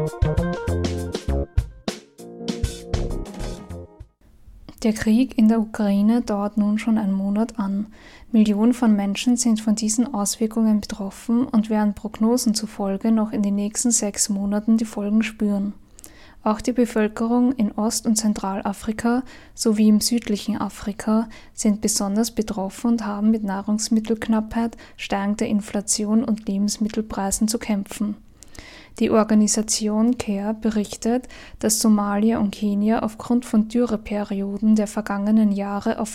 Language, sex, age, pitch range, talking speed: German, female, 10-29, 205-225 Hz, 120 wpm